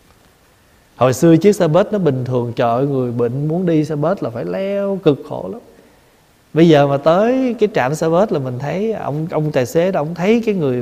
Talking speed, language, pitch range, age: 225 wpm, Vietnamese, 130-175 Hz, 20-39